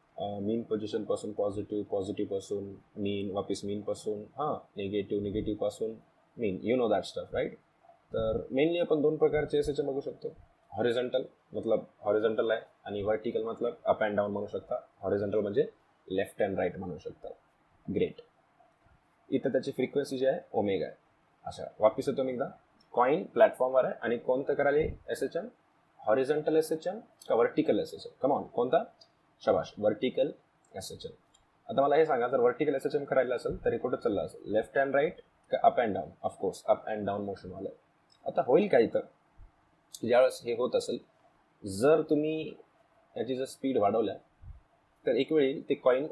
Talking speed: 80 wpm